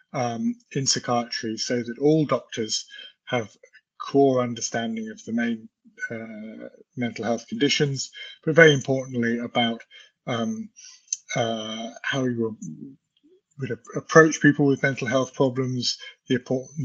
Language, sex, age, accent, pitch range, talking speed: English, male, 20-39, British, 120-160 Hz, 125 wpm